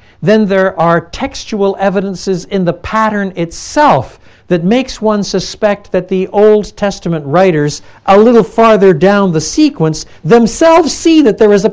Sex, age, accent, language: male, 60-79, American, Danish